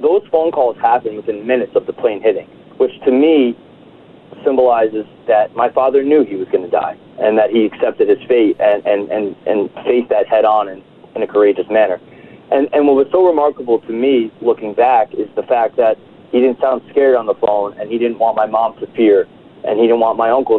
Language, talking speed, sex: English, 225 wpm, male